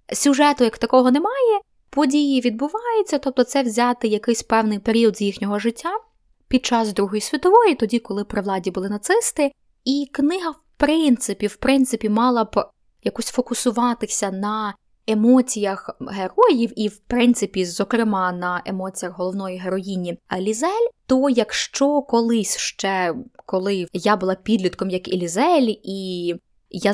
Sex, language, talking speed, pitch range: female, Ukrainian, 130 wpm, 195-255 Hz